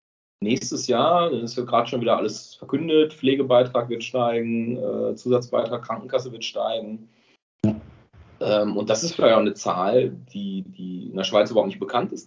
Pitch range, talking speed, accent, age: 105-130 Hz, 170 wpm, German, 30-49